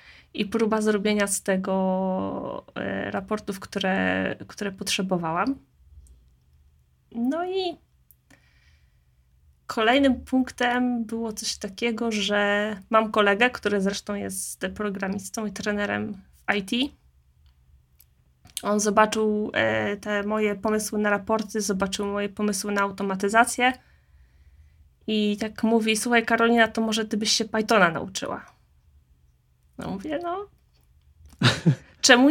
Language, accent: Polish, native